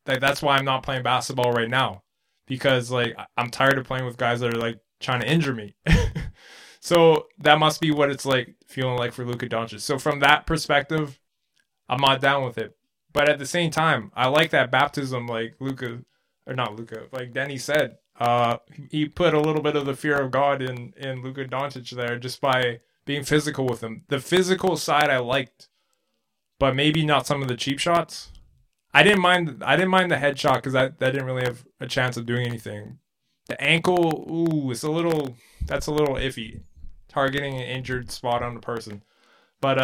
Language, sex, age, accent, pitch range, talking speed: English, male, 20-39, American, 120-150 Hz, 200 wpm